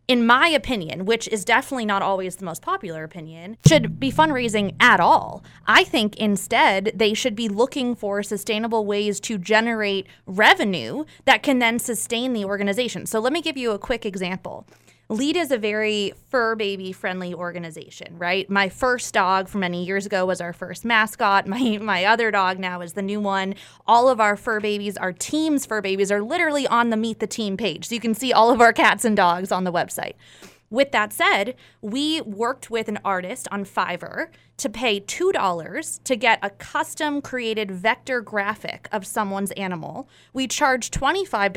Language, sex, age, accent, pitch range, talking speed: English, female, 20-39, American, 195-255 Hz, 185 wpm